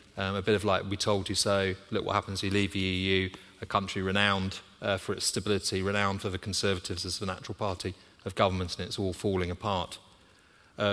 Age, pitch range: 40-59, 100-115 Hz